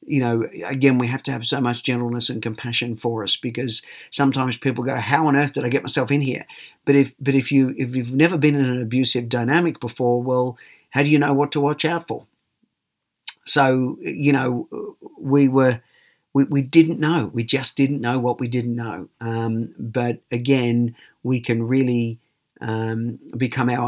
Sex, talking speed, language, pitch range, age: male, 195 wpm, English, 120-140 Hz, 40-59